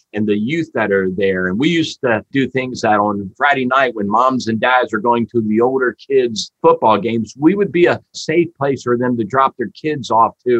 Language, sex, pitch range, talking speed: English, male, 110-165 Hz, 240 wpm